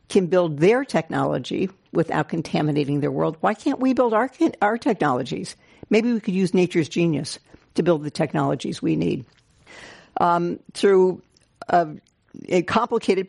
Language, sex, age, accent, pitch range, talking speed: English, female, 60-79, American, 170-210 Hz, 145 wpm